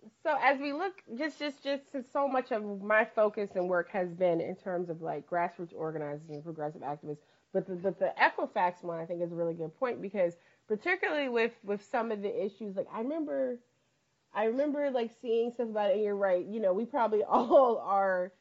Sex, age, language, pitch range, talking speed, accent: female, 30-49, English, 170-220 Hz, 215 wpm, American